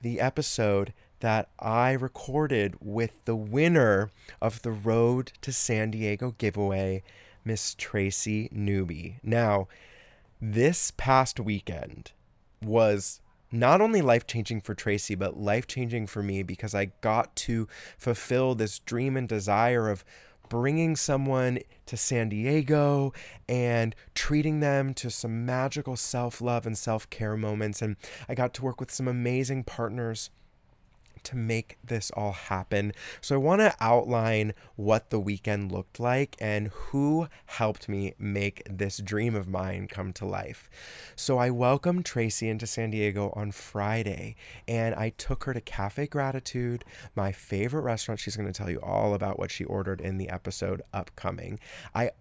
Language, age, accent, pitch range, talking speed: English, 20-39, American, 100-125 Hz, 150 wpm